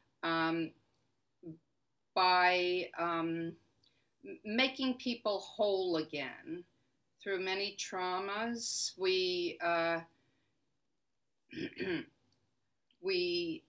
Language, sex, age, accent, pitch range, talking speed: English, female, 50-69, American, 165-200 Hz, 55 wpm